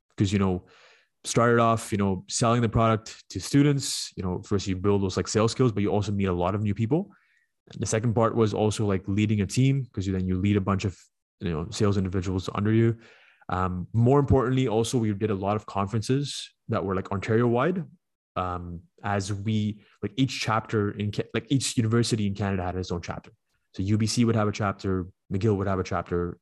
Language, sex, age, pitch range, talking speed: English, male, 20-39, 95-115 Hz, 220 wpm